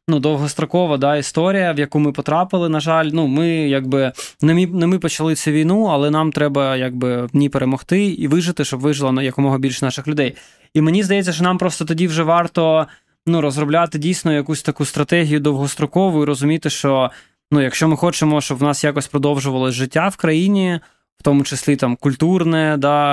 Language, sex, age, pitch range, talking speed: Ukrainian, male, 20-39, 140-165 Hz, 185 wpm